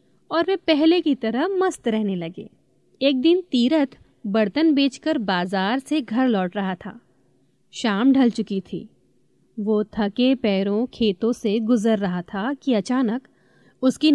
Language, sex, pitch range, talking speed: Hindi, female, 215-275 Hz, 145 wpm